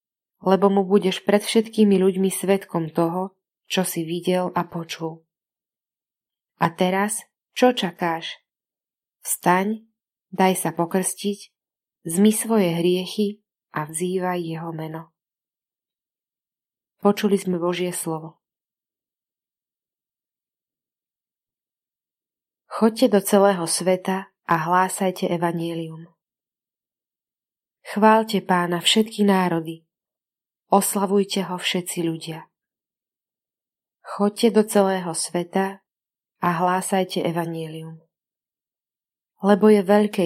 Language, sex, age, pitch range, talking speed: Slovak, female, 20-39, 170-200 Hz, 85 wpm